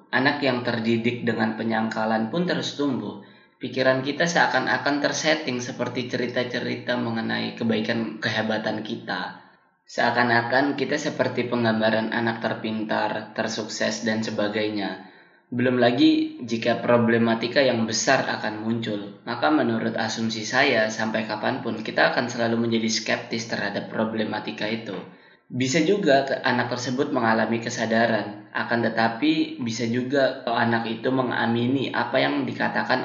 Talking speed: 120 wpm